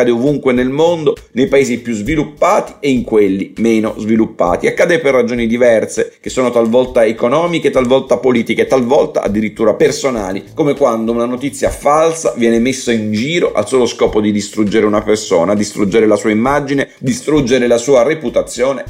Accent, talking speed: native, 160 wpm